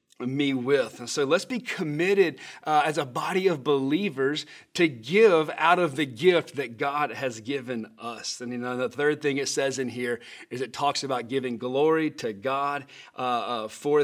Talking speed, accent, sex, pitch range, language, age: 190 wpm, American, male, 130-155 Hz, English, 30-49